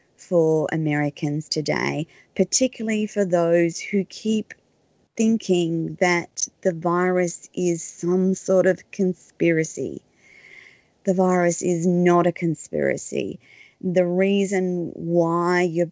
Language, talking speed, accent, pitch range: English, 100 wpm, Australian, 160-185 Hz